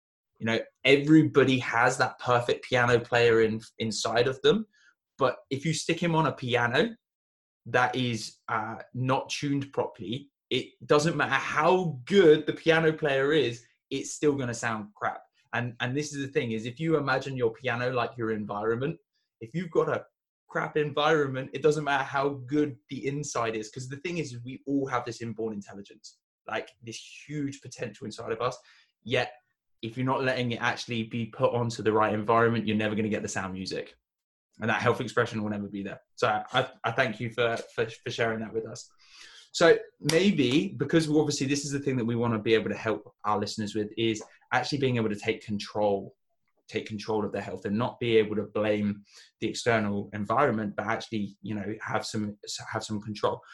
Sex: male